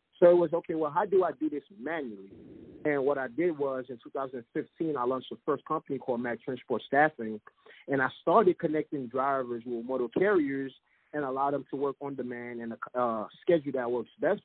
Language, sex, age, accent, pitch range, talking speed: English, male, 30-49, American, 130-170 Hz, 205 wpm